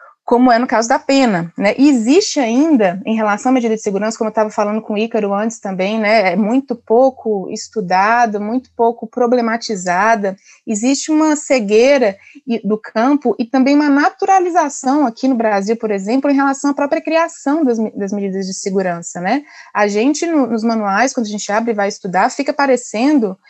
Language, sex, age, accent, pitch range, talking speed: Portuguese, female, 20-39, Brazilian, 210-270 Hz, 180 wpm